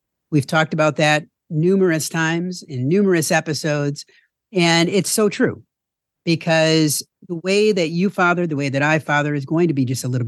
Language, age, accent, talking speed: English, 50-69, American, 180 wpm